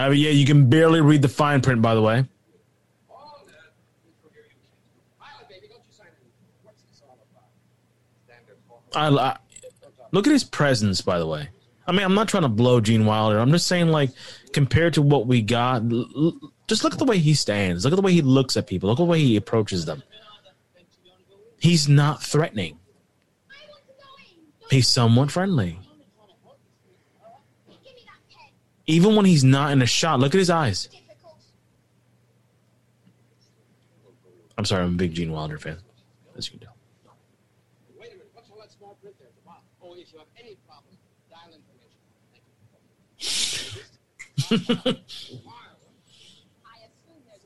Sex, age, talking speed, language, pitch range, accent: male, 20-39, 110 wpm, English, 120-180 Hz, American